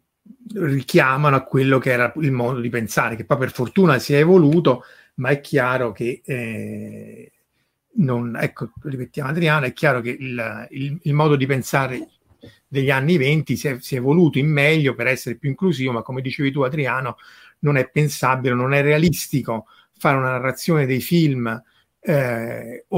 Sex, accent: male, native